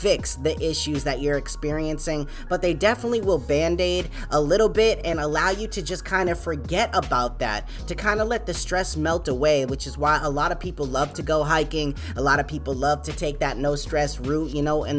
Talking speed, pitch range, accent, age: 230 wpm, 150-195 Hz, American, 20-39